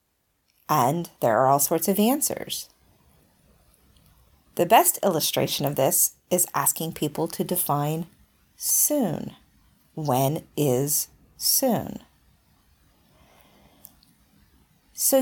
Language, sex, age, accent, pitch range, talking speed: English, female, 40-59, American, 155-230 Hz, 85 wpm